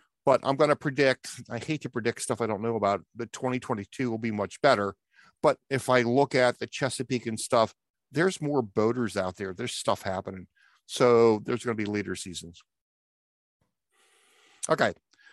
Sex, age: male, 50-69